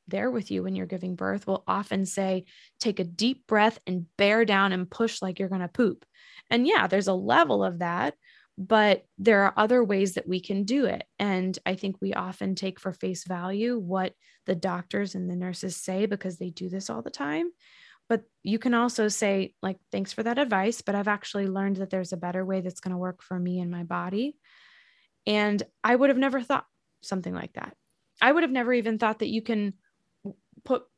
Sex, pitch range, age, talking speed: female, 180-220 Hz, 20-39, 215 wpm